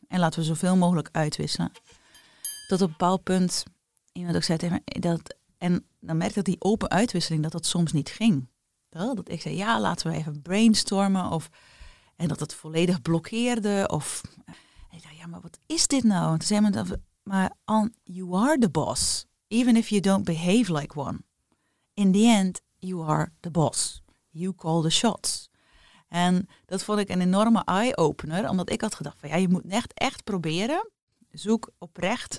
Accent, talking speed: Dutch, 185 wpm